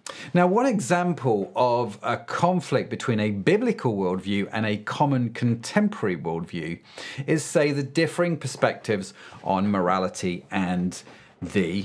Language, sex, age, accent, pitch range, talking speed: English, male, 40-59, British, 115-150 Hz, 120 wpm